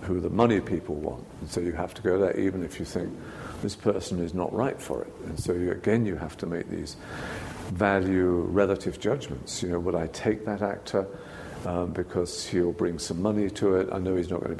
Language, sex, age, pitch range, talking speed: English, male, 50-69, 90-105 Hz, 225 wpm